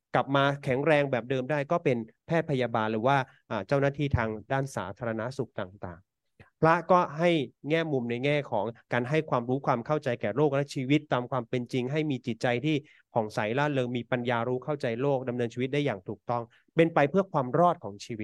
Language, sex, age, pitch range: Thai, male, 30-49, 115-150 Hz